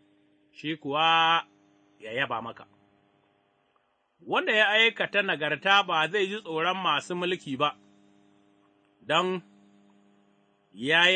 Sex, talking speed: male, 85 wpm